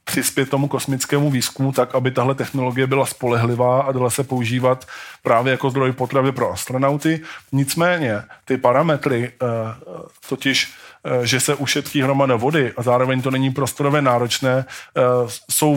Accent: native